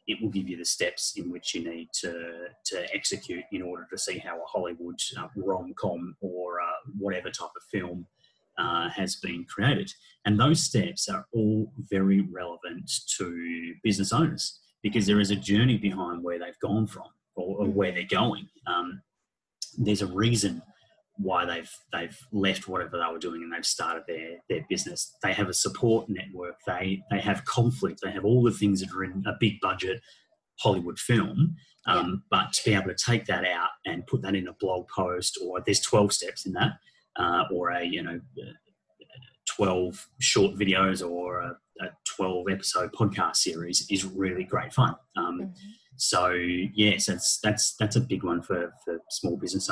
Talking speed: 185 wpm